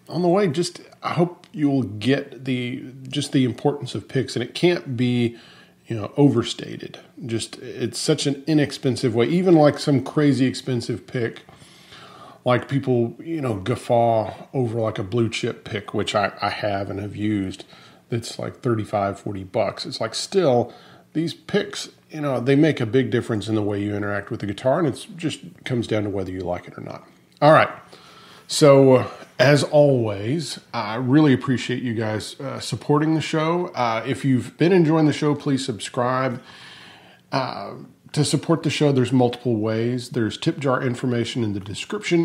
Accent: American